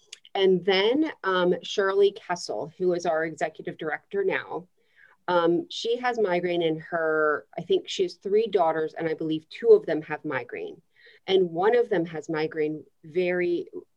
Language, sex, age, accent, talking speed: English, female, 40-59, American, 165 wpm